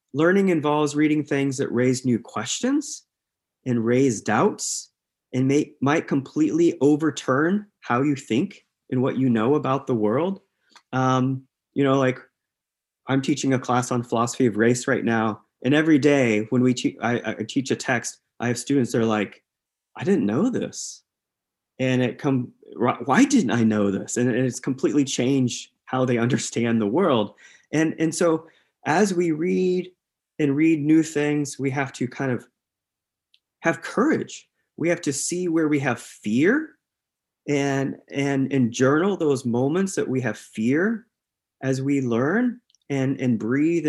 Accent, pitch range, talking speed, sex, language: American, 120-155 Hz, 165 wpm, male, English